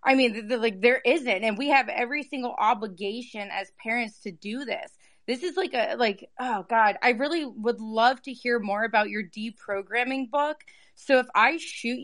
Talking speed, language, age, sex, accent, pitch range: 200 wpm, English, 20-39, female, American, 205-245 Hz